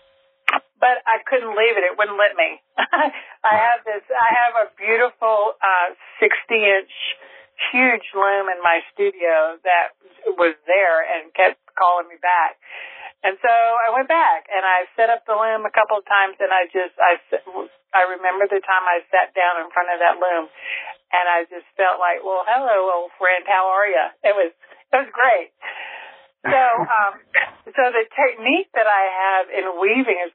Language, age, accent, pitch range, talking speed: English, 50-69, American, 175-225 Hz, 180 wpm